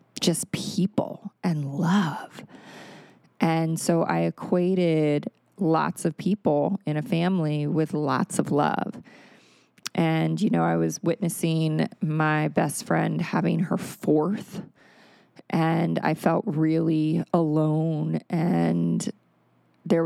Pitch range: 150-185 Hz